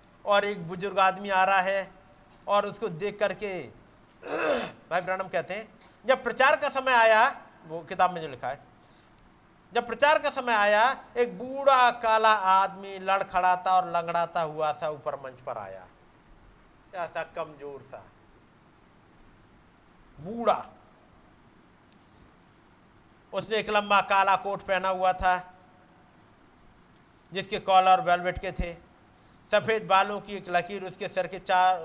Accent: native